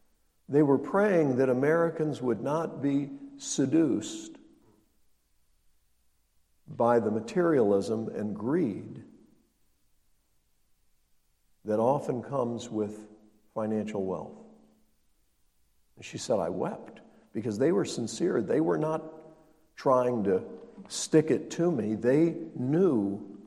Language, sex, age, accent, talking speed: English, male, 60-79, American, 100 wpm